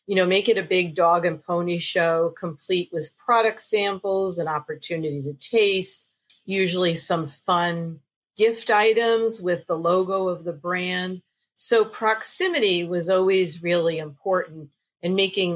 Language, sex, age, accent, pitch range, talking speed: English, female, 40-59, American, 160-195 Hz, 145 wpm